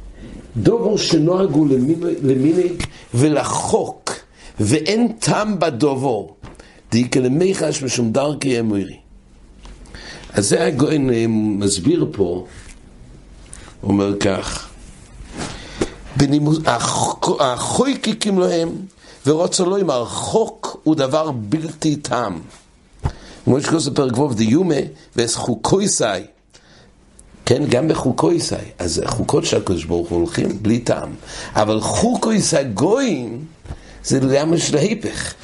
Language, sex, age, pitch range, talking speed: English, male, 60-79, 110-160 Hz, 95 wpm